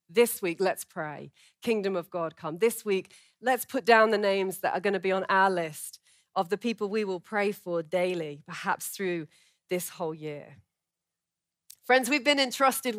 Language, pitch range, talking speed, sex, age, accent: English, 185-245 Hz, 185 wpm, female, 30-49, British